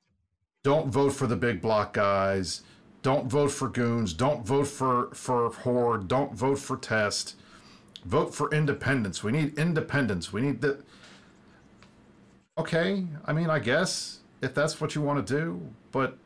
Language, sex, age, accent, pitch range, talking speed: English, male, 50-69, American, 105-145 Hz, 155 wpm